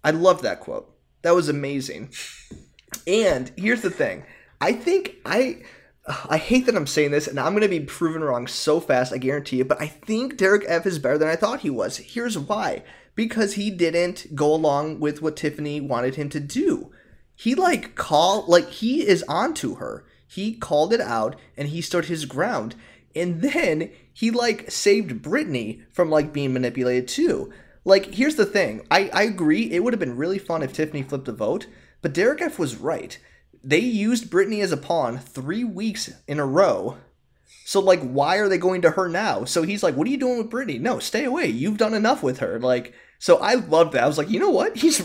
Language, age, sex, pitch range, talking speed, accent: English, 20-39, male, 145-215 Hz, 215 wpm, American